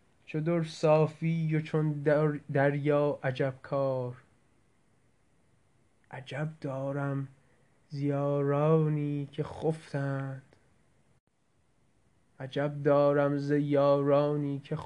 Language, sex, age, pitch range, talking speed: French, male, 20-39, 135-150 Hz, 70 wpm